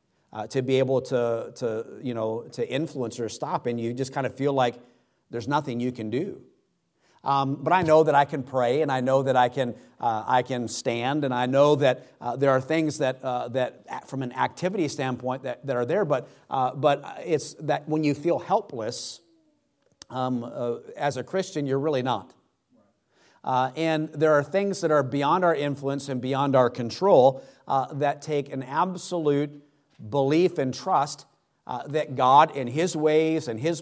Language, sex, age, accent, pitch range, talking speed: English, male, 50-69, American, 130-150 Hz, 190 wpm